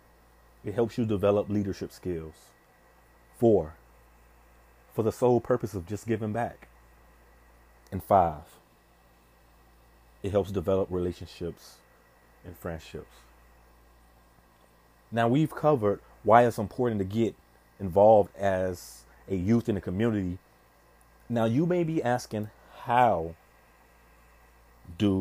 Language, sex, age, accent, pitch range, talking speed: English, male, 30-49, American, 70-110 Hz, 105 wpm